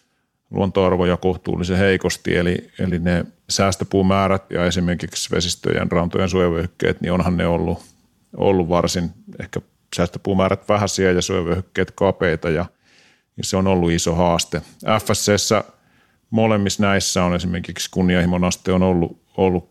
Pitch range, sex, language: 90-95 Hz, male, Finnish